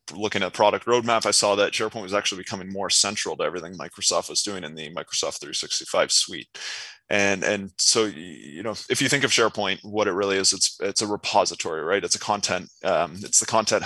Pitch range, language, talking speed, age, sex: 95-110 Hz, English, 210 wpm, 20-39, male